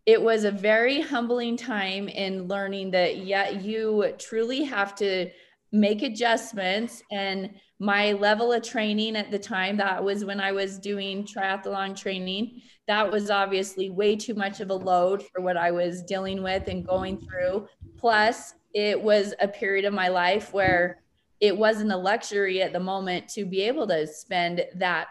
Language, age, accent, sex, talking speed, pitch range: English, 20-39, American, female, 170 wpm, 185-215 Hz